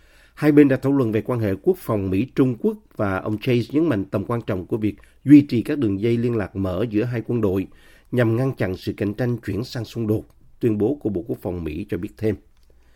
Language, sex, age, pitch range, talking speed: Vietnamese, male, 50-69, 100-130 Hz, 250 wpm